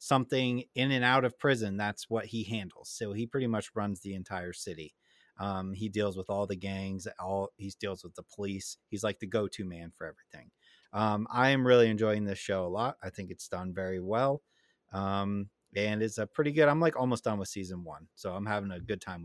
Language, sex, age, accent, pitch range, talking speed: English, male, 30-49, American, 95-115 Hz, 225 wpm